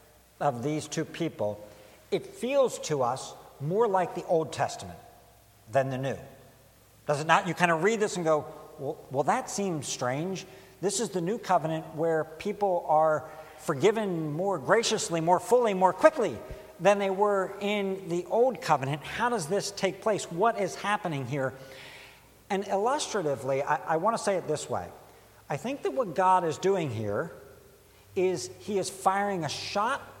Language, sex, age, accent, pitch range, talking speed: English, male, 60-79, American, 140-200 Hz, 170 wpm